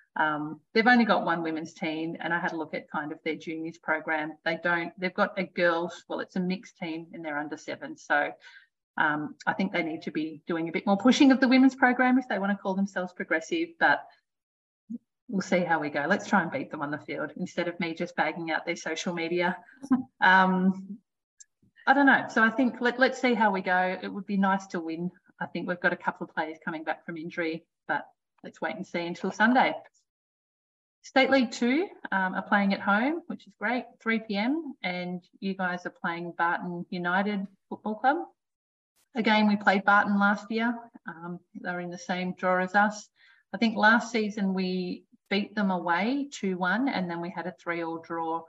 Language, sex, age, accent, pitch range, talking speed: English, female, 40-59, Australian, 170-230 Hz, 210 wpm